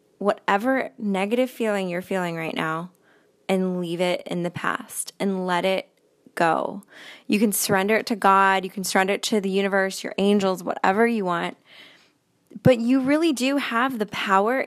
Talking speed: 170 wpm